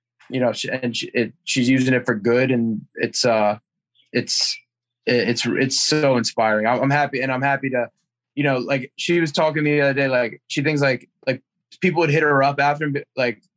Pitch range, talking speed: 120-145 Hz, 210 wpm